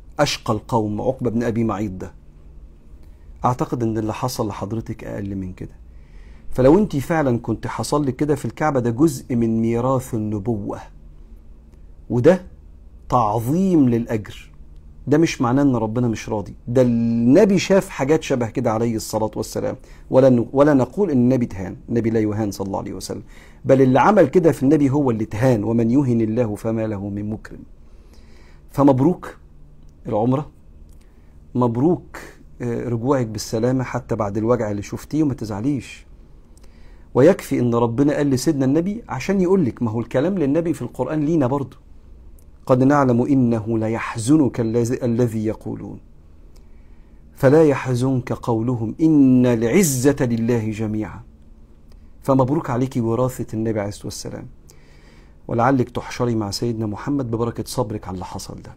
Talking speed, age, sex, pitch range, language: 135 wpm, 50-69, male, 75-130 Hz, Arabic